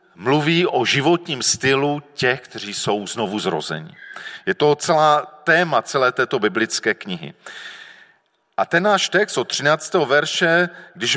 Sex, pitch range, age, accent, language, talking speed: male, 125-160 Hz, 40-59, native, Czech, 135 wpm